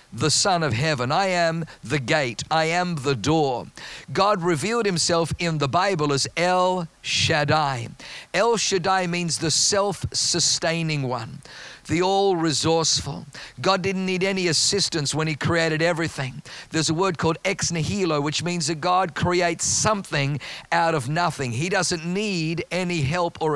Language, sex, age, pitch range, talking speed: English, male, 50-69, 155-190 Hz, 150 wpm